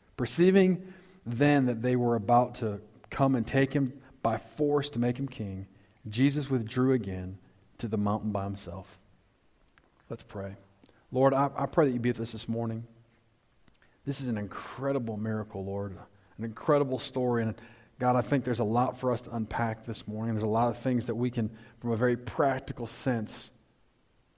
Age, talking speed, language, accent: 40-59, 180 wpm, English, American